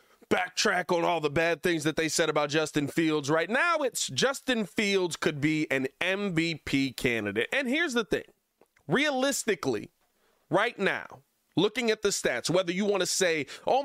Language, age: English, 30-49